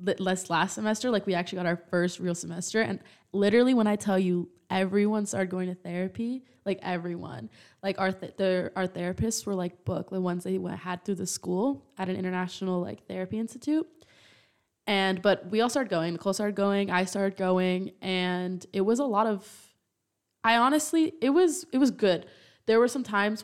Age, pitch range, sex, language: 20-39, 180-205 Hz, female, English